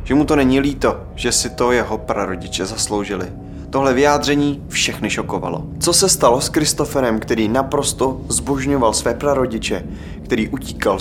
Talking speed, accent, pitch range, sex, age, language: 145 wpm, native, 95-125 Hz, male, 20-39, Czech